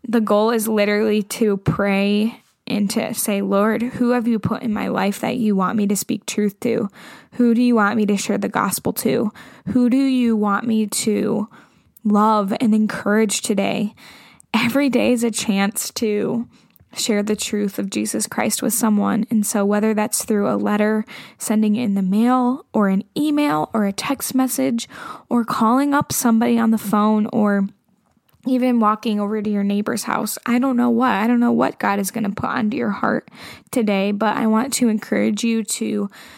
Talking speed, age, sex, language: 195 wpm, 10-29, female, English